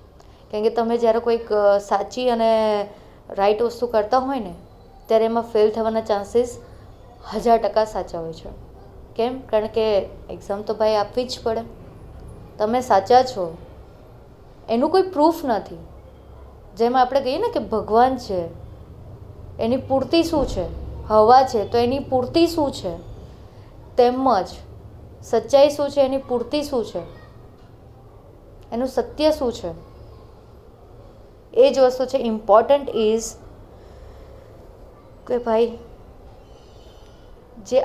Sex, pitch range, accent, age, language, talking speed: female, 200-250 Hz, native, 20-39, Gujarati, 95 wpm